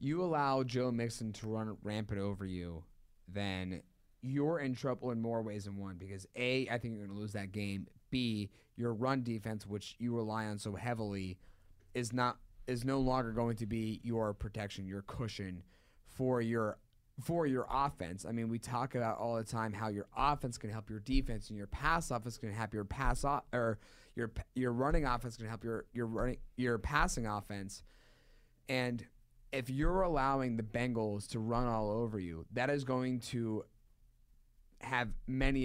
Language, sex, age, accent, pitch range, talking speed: English, male, 30-49, American, 105-130 Hz, 185 wpm